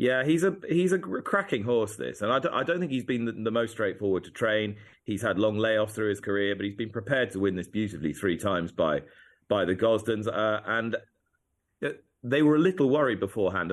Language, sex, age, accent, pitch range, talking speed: English, male, 30-49, British, 95-120 Hz, 225 wpm